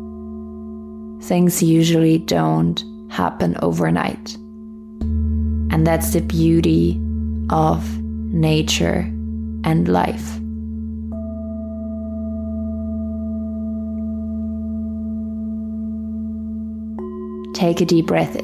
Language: English